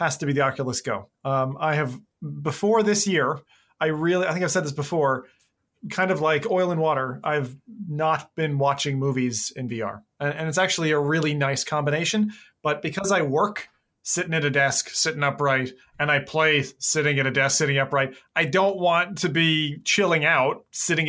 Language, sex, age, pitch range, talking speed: English, male, 30-49, 140-180 Hz, 195 wpm